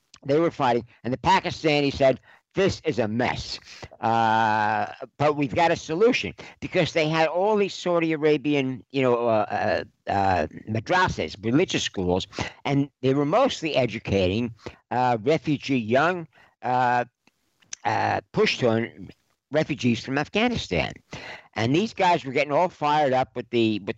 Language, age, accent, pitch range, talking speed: English, 60-79, American, 110-150 Hz, 145 wpm